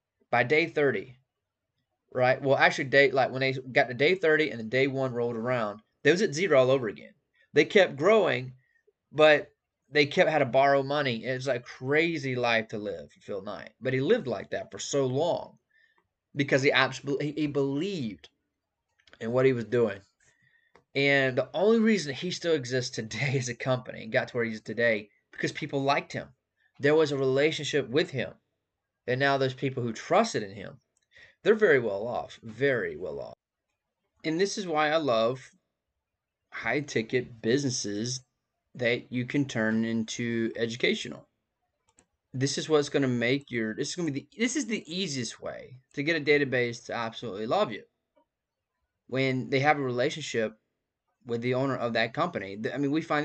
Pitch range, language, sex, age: 120-150 Hz, English, male, 20-39